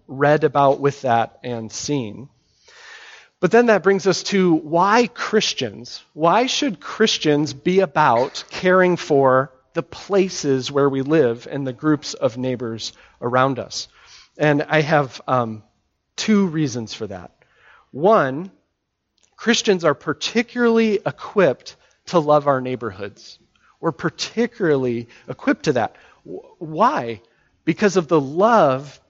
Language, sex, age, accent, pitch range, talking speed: English, male, 40-59, American, 135-185 Hz, 125 wpm